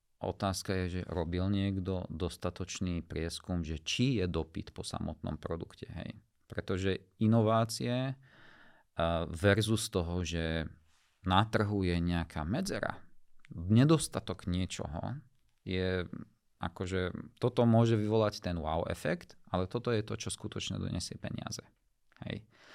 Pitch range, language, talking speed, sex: 80-100 Hz, Slovak, 115 wpm, male